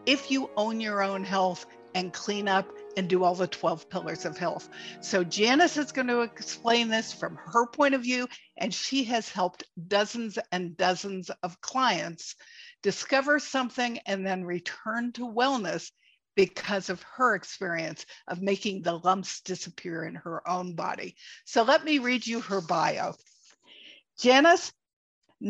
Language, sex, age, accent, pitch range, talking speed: English, female, 50-69, American, 190-255 Hz, 155 wpm